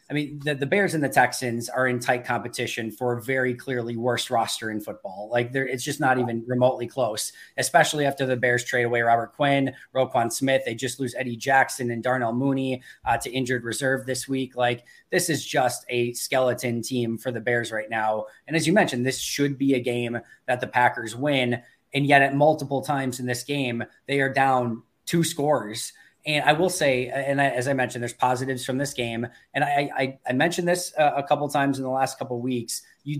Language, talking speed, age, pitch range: English, 210 wpm, 20-39, 120-140 Hz